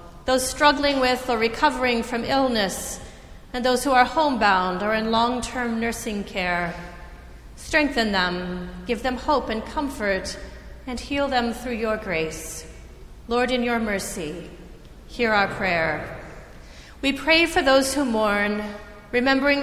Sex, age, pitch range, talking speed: female, 30-49, 200-260 Hz, 135 wpm